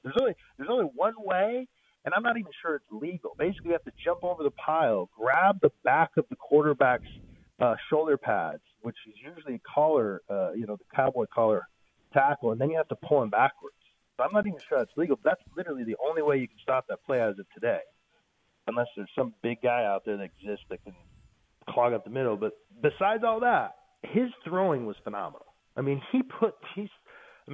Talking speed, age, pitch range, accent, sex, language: 210 wpm, 40-59, 125-185 Hz, American, male, English